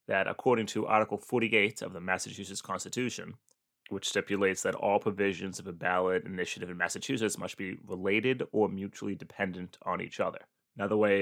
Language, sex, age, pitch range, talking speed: English, male, 20-39, 95-115 Hz, 165 wpm